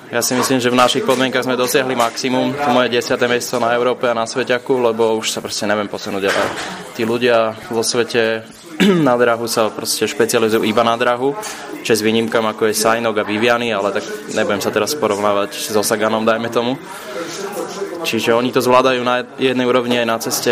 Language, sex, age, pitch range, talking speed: Slovak, male, 20-39, 105-125 Hz, 195 wpm